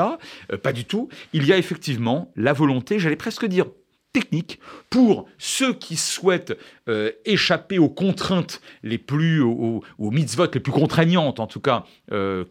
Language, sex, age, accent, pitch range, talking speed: French, male, 40-59, French, 115-165 Hz, 160 wpm